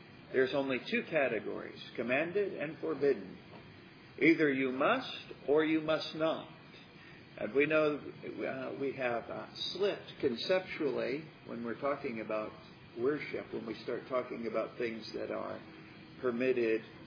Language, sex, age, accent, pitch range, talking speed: English, male, 50-69, American, 115-155 Hz, 125 wpm